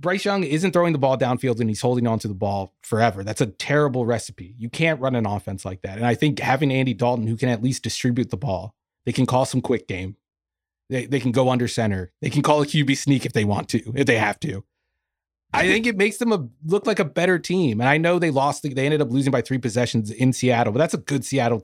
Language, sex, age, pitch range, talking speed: English, male, 30-49, 115-150 Hz, 260 wpm